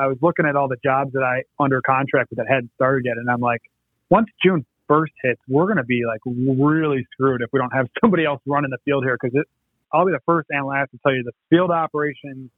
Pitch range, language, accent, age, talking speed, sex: 120-145 Hz, English, American, 30-49, 260 wpm, male